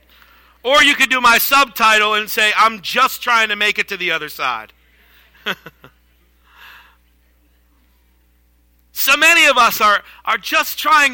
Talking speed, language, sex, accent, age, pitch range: 140 wpm, English, male, American, 50-69, 185-230 Hz